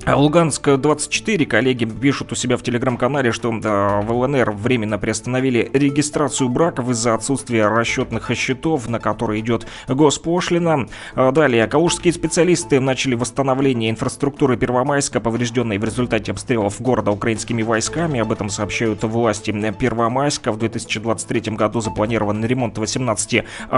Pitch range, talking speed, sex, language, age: 115-135 Hz, 120 wpm, male, Russian, 20-39